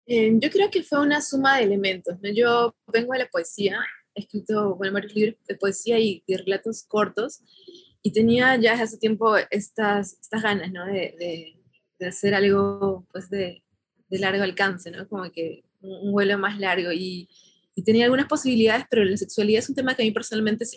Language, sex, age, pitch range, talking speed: Spanish, female, 20-39, 190-225 Hz, 195 wpm